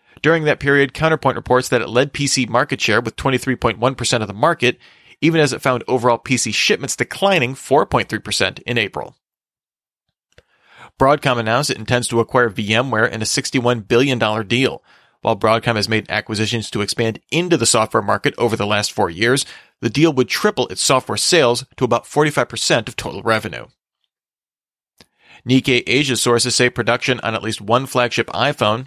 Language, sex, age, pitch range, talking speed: English, male, 30-49, 115-135 Hz, 165 wpm